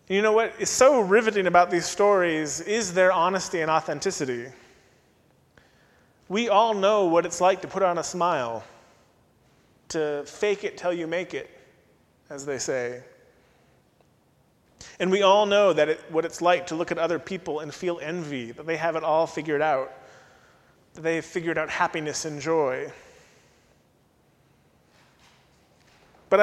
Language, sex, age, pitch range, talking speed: English, male, 30-49, 155-185 Hz, 150 wpm